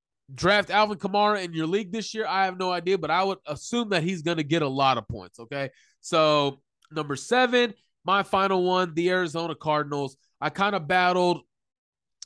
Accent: American